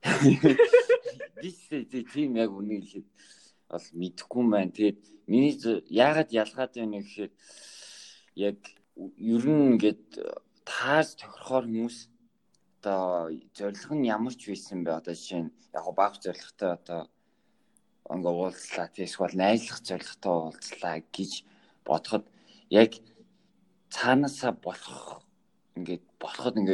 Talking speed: 60 wpm